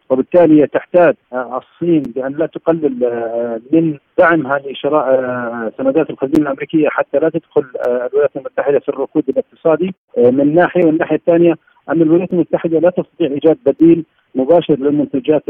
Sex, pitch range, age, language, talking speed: male, 135-160 Hz, 50-69, Arabic, 130 wpm